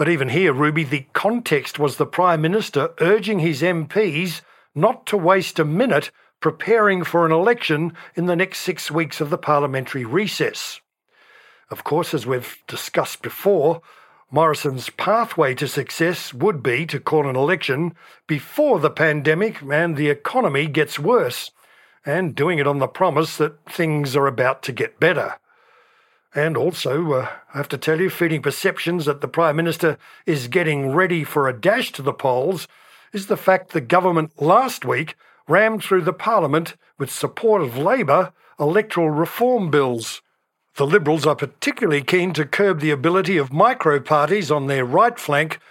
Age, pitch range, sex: 60-79, 145-185 Hz, male